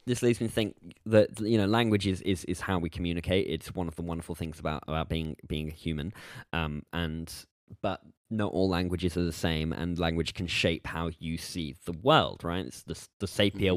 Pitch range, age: 85-105 Hz, 10-29